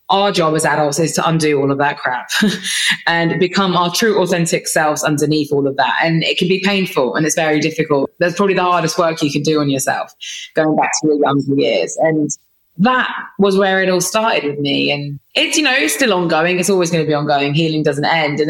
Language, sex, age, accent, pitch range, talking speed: English, female, 20-39, British, 145-180 Hz, 235 wpm